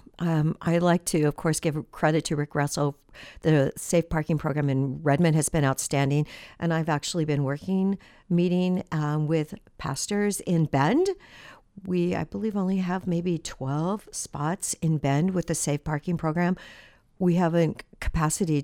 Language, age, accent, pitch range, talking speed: English, 60-79, American, 150-180 Hz, 160 wpm